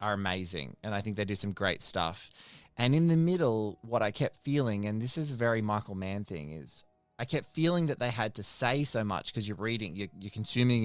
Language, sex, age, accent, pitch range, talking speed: English, male, 20-39, Australian, 95-120 Hz, 240 wpm